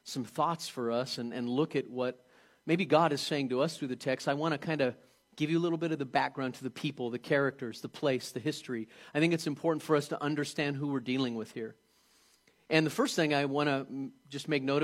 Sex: male